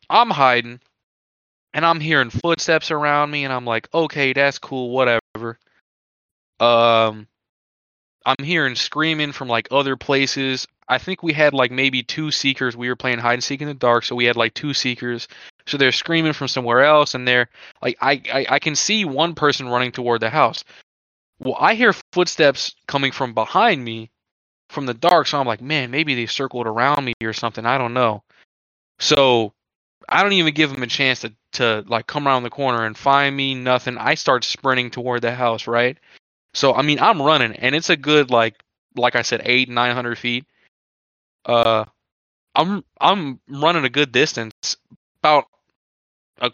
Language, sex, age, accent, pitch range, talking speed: English, male, 20-39, American, 120-150 Hz, 180 wpm